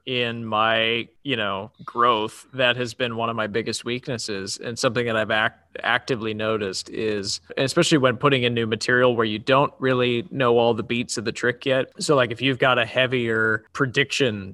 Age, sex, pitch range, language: 20-39, male, 110-130 Hz, English